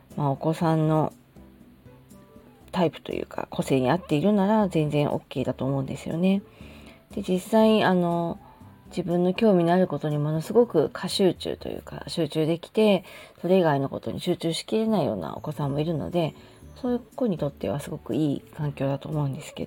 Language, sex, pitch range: Japanese, female, 145-190 Hz